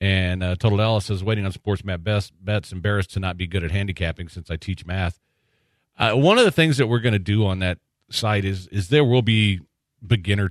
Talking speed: 240 wpm